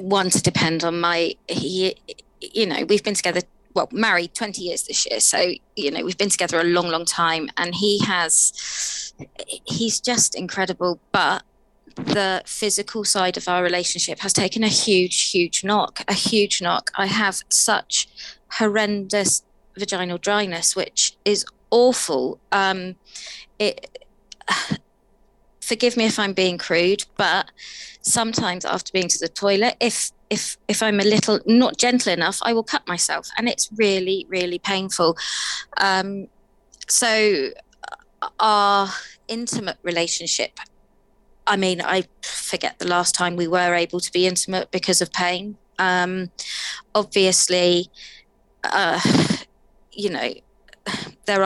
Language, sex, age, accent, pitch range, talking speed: English, female, 20-39, British, 180-210 Hz, 140 wpm